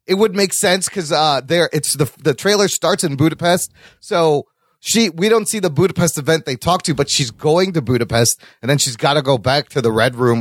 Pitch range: 140-205 Hz